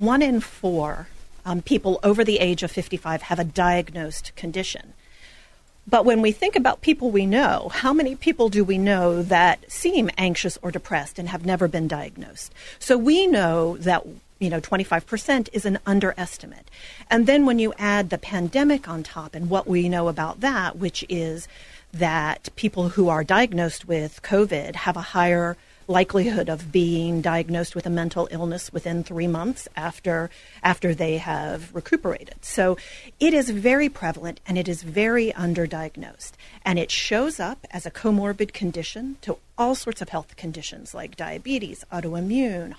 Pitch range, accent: 170-225 Hz, American